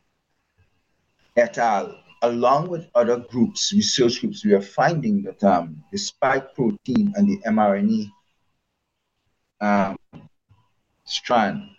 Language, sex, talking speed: English, male, 105 wpm